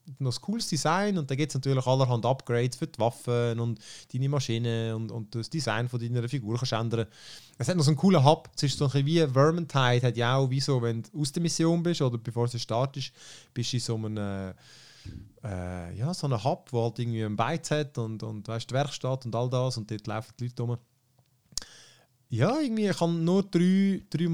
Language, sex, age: German, male, 30-49